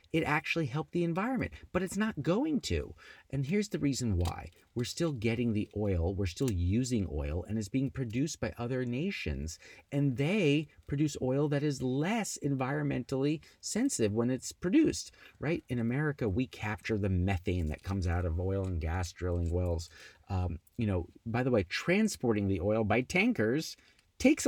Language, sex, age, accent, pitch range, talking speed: English, male, 30-49, American, 95-150 Hz, 175 wpm